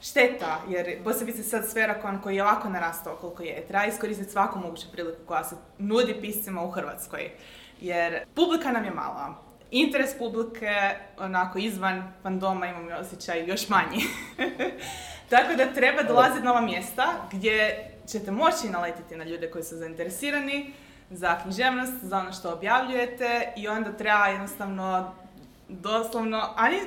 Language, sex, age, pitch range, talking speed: Croatian, female, 20-39, 190-250 Hz, 150 wpm